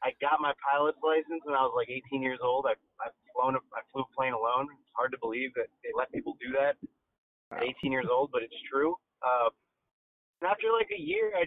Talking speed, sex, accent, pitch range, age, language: 235 wpm, male, American, 135-175 Hz, 30-49, English